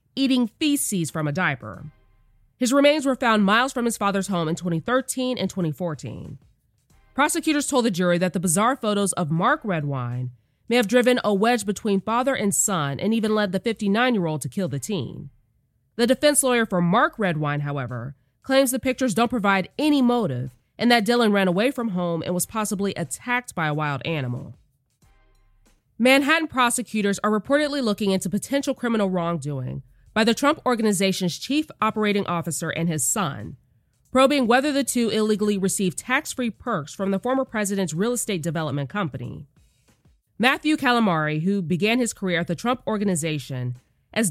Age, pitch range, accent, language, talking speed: 20-39, 155-245 Hz, American, English, 165 wpm